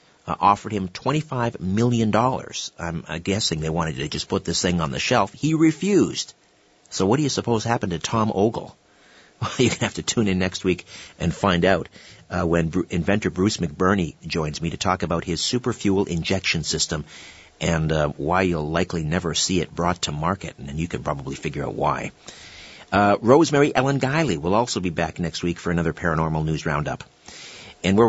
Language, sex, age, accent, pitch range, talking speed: English, male, 50-69, American, 85-105 Hz, 195 wpm